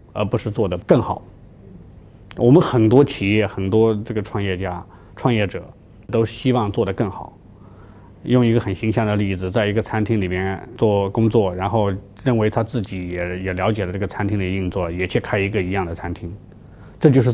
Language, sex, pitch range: Chinese, male, 95-120 Hz